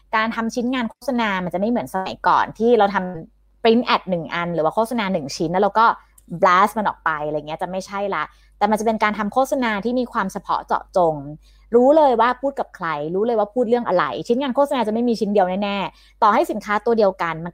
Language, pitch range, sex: Thai, 190-245 Hz, female